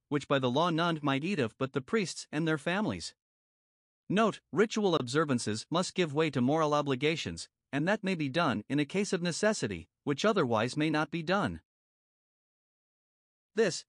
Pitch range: 130-175 Hz